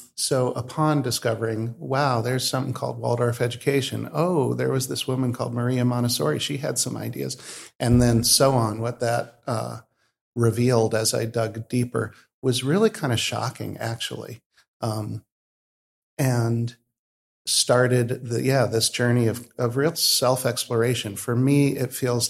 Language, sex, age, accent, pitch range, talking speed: English, male, 50-69, American, 110-125 Hz, 145 wpm